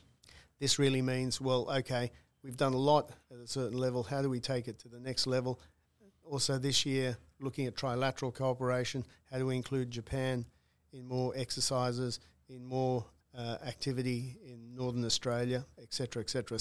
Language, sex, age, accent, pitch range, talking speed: English, male, 50-69, Australian, 120-130 Hz, 175 wpm